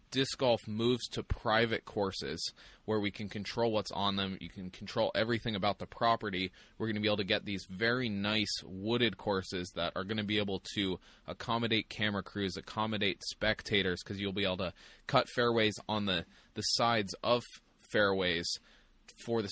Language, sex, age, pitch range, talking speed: English, male, 20-39, 95-115 Hz, 180 wpm